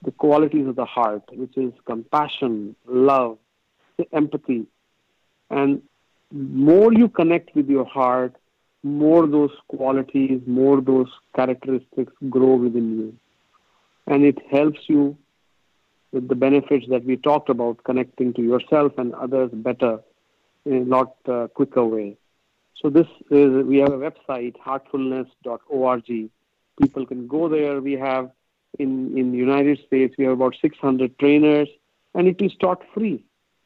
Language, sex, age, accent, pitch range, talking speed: English, male, 50-69, Indian, 130-145 Hz, 140 wpm